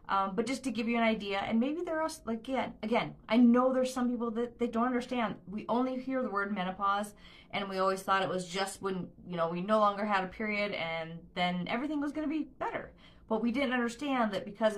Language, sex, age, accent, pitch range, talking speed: English, female, 30-49, American, 185-240 Hz, 240 wpm